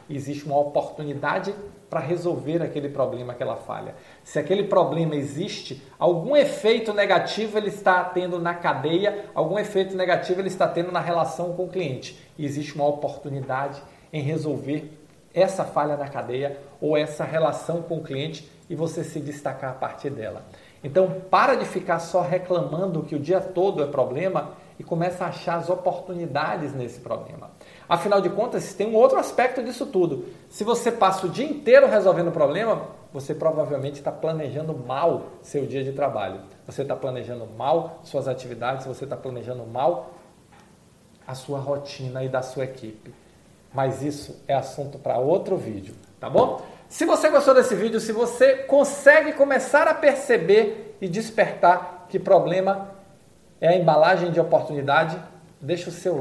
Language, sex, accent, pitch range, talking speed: Portuguese, male, Brazilian, 140-190 Hz, 160 wpm